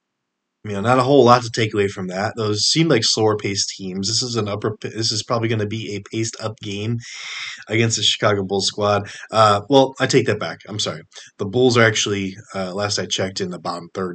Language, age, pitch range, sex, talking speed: English, 20-39, 95-115 Hz, male, 230 wpm